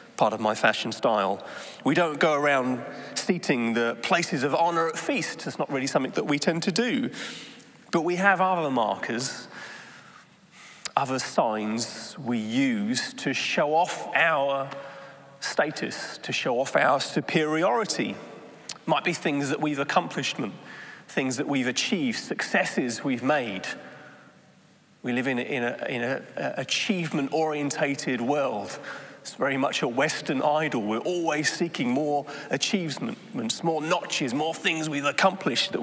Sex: male